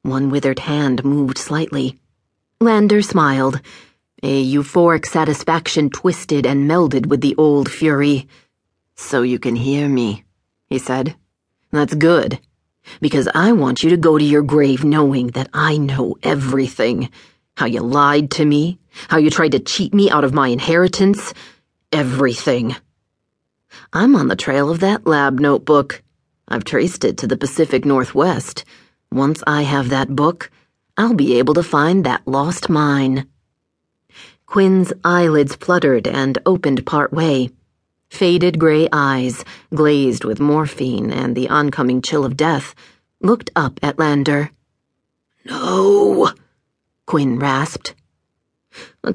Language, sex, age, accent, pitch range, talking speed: English, female, 40-59, American, 130-160 Hz, 135 wpm